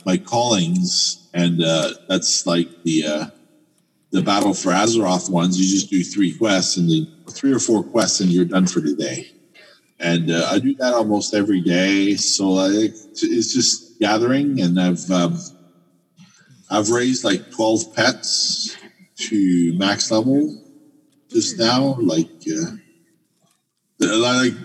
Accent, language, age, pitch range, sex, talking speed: American, English, 40-59, 90-135 Hz, male, 145 wpm